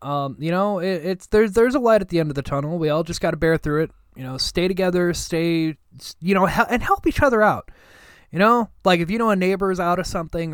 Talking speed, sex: 275 wpm, male